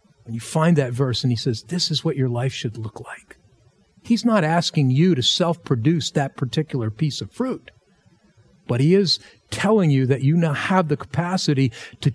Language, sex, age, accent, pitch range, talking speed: English, male, 40-59, American, 140-200 Hz, 195 wpm